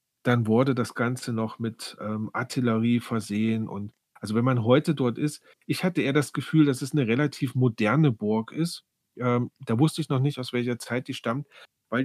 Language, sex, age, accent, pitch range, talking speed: German, male, 40-59, German, 115-145 Hz, 200 wpm